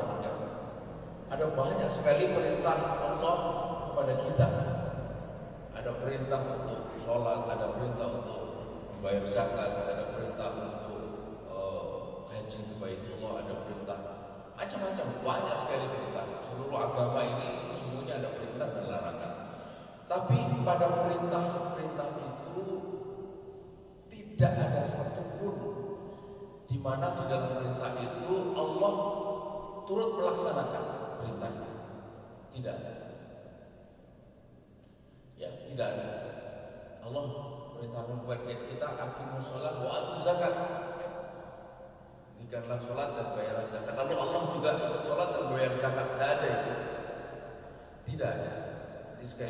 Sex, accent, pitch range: male, native, 120-175 Hz